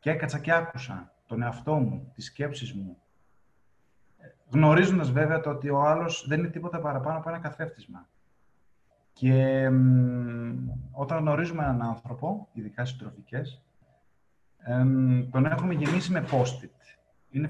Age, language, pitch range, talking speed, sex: 30-49, Greek, 125-155 Hz, 125 wpm, male